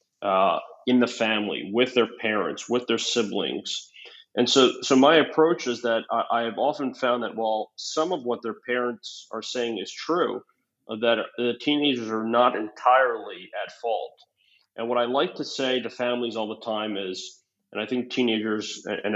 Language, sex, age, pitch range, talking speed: English, male, 30-49, 110-130 Hz, 180 wpm